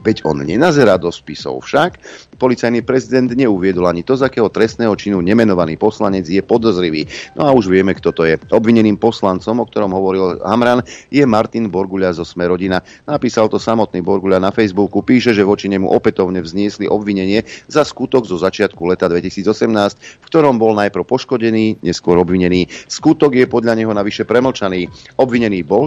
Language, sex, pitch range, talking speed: Slovak, male, 95-120 Hz, 165 wpm